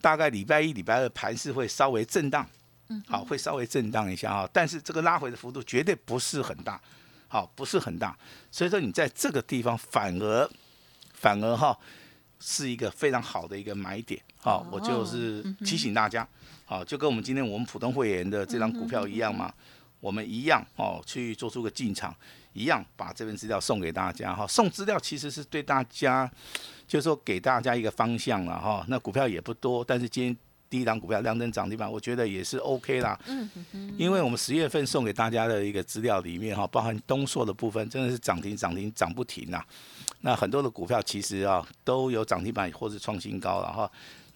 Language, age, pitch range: Chinese, 50-69, 105-130 Hz